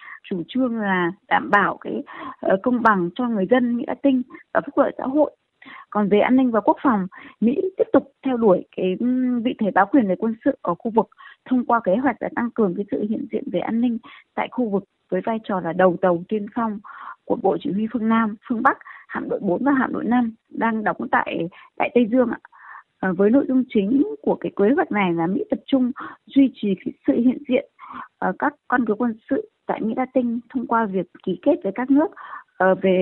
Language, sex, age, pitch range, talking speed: Vietnamese, female, 20-39, 210-270 Hz, 230 wpm